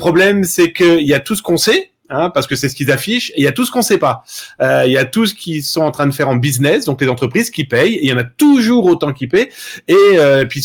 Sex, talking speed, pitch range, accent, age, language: male, 325 wpm, 130-180 Hz, French, 30-49, French